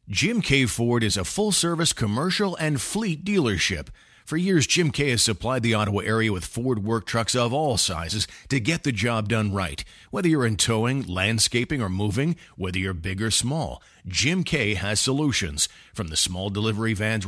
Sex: male